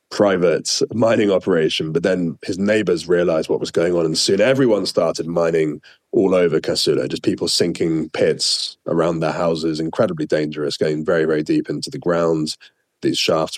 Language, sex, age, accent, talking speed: English, male, 30-49, British, 170 wpm